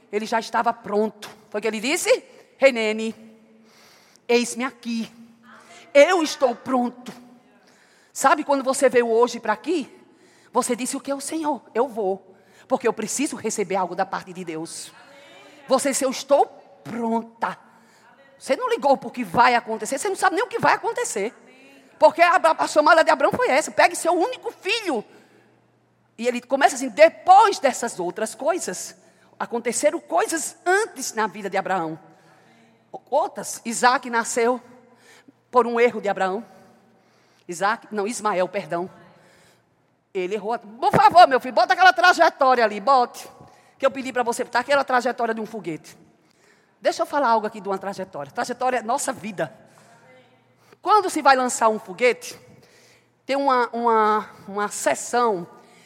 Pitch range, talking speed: 215-280 Hz, 150 wpm